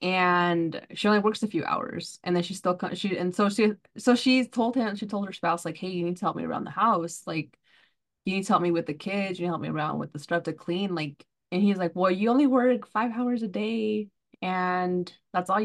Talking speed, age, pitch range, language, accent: 265 wpm, 20-39, 170-215 Hz, English, American